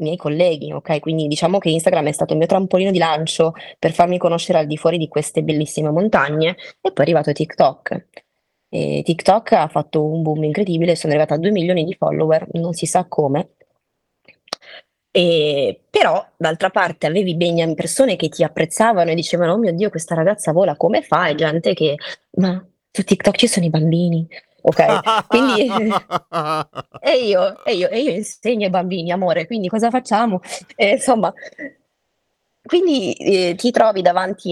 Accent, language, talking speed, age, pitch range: native, Italian, 175 wpm, 20-39, 155-195 Hz